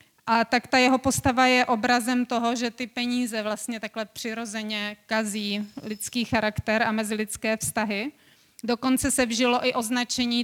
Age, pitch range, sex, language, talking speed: 30-49, 220-245 Hz, female, Czech, 145 wpm